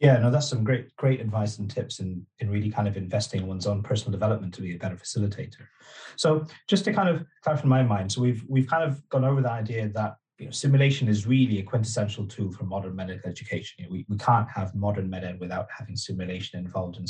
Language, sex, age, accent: English, male, 30-49, British